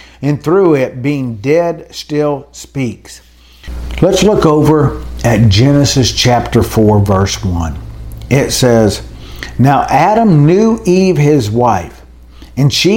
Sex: male